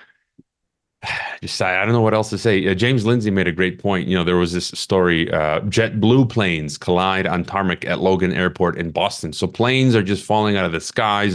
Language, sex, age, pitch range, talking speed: English, male, 30-49, 95-120 Hz, 220 wpm